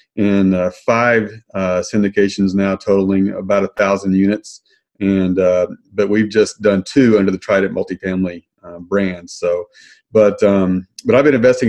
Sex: male